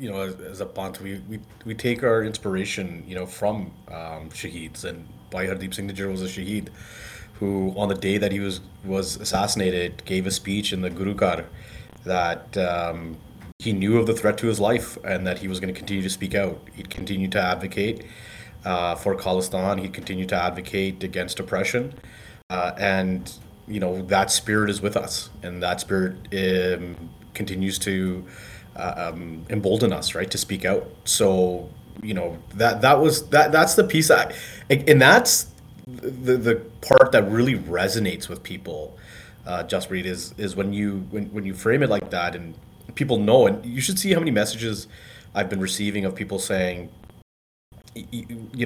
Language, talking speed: English, 180 wpm